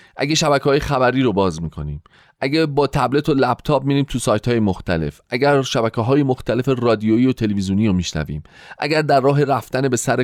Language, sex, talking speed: Persian, male, 190 wpm